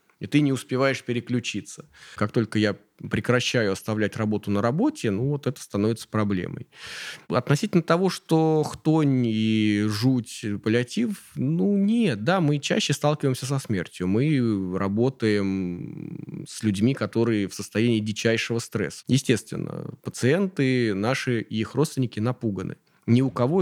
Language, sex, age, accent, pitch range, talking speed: Russian, male, 20-39, native, 110-145 Hz, 130 wpm